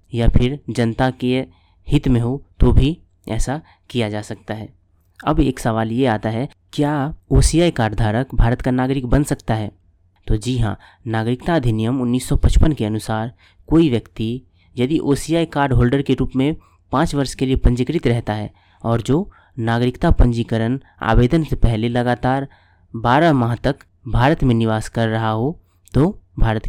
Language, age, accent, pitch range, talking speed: Hindi, 20-39, native, 110-135 Hz, 165 wpm